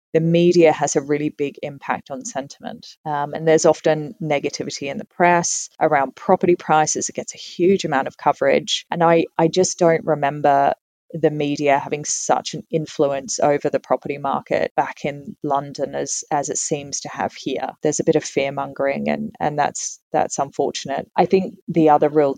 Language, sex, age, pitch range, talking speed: English, female, 20-39, 145-160 Hz, 185 wpm